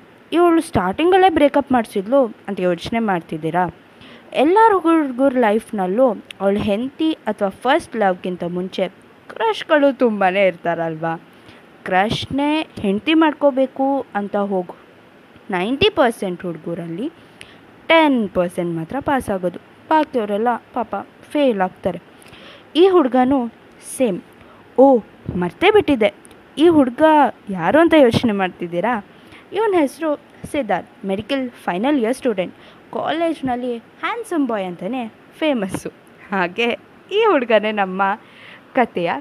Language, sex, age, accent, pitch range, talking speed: Kannada, female, 20-39, native, 190-290 Hz, 100 wpm